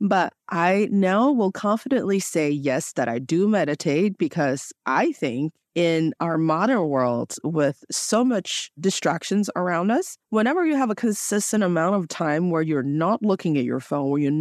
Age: 30-49